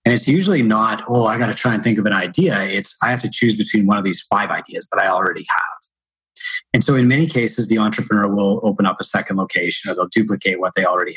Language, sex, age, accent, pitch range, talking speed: English, male, 30-49, American, 100-125 Hz, 260 wpm